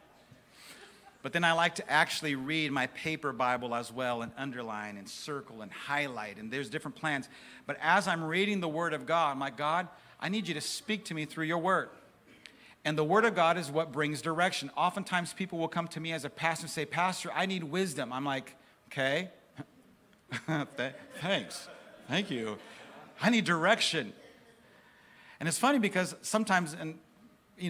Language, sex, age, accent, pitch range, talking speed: English, male, 50-69, American, 155-185 Hz, 180 wpm